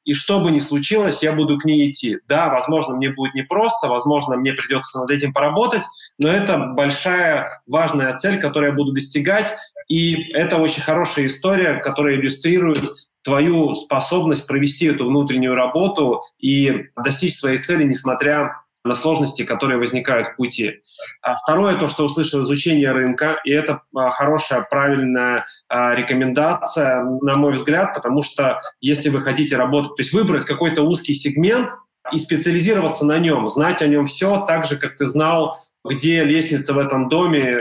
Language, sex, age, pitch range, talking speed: Russian, male, 30-49, 135-160 Hz, 160 wpm